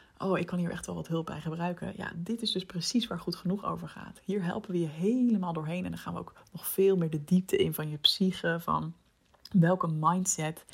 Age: 30-49